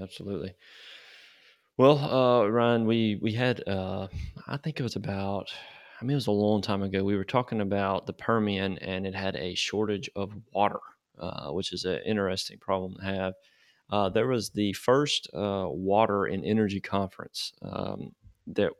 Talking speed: 170 wpm